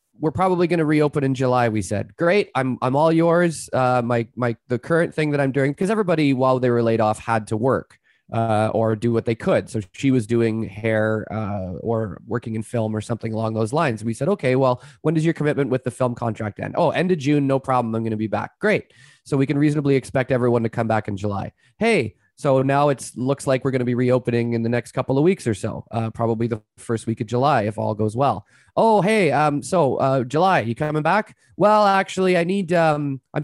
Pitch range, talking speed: 120-165 Hz, 240 wpm